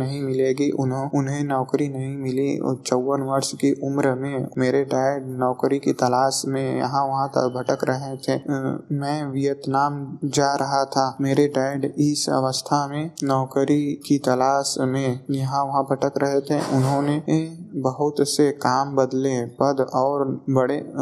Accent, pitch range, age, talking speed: native, 135-145 Hz, 20-39, 150 wpm